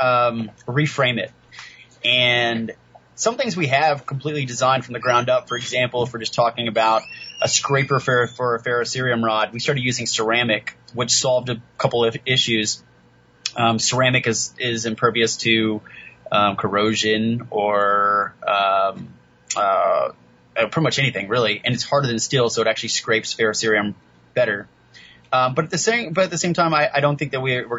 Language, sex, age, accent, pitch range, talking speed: English, male, 20-39, American, 115-150 Hz, 175 wpm